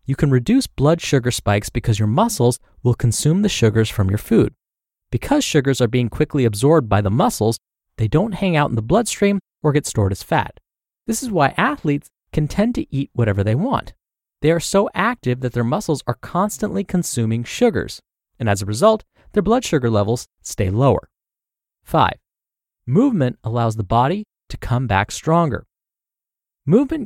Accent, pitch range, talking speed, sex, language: American, 110-180 Hz, 175 wpm, male, English